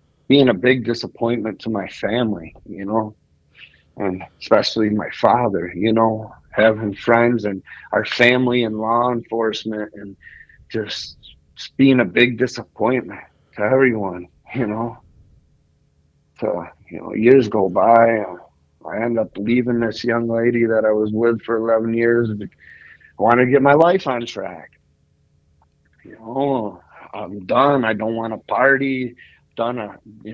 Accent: American